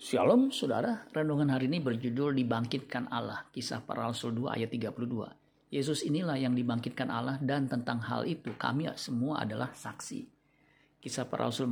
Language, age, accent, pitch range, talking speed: Indonesian, 50-69, native, 120-140 Hz, 145 wpm